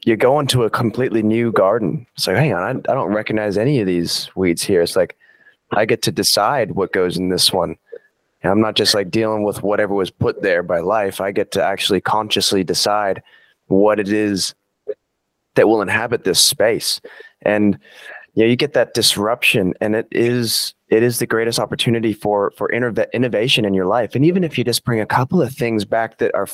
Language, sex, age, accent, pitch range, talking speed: English, male, 20-39, American, 105-145 Hz, 210 wpm